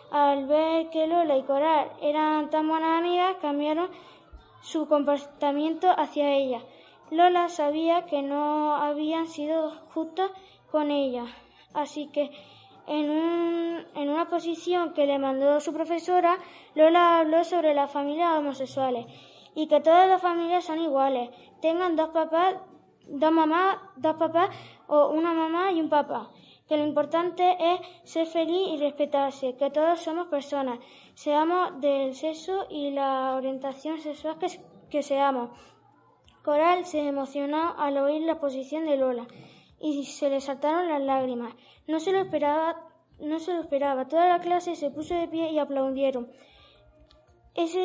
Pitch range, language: 285-340 Hz, Spanish